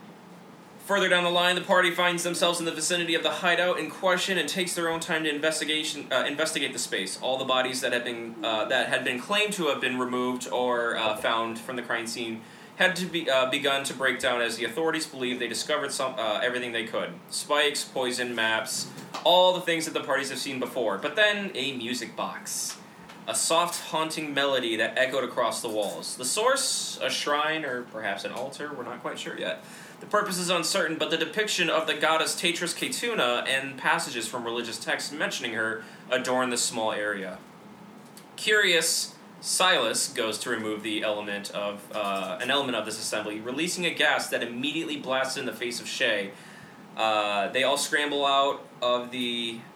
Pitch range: 115-170 Hz